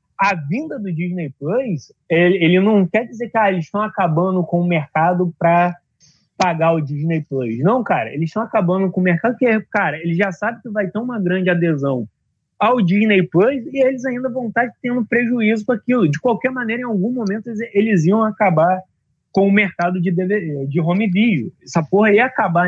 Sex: male